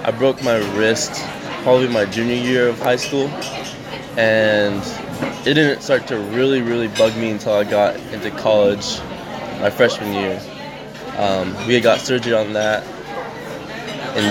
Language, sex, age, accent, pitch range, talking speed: English, male, 20-39, American, 105-120 Hz, 150 wpm